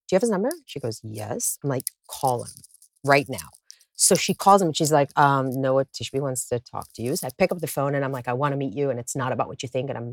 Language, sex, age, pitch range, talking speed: English, female, 40-59, 130-165 Hz, 310 wpm